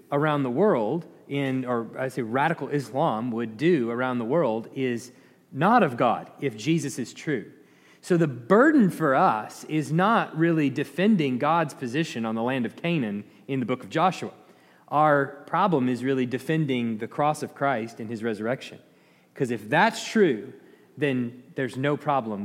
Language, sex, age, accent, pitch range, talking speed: English, male, 30-49, American, 130-165 Hz, 170 wpm